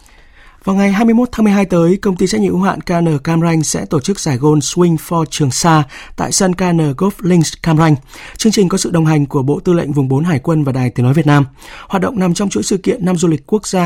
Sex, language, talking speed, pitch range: male, Vietnamese, 275 wpm, 135-180 Hz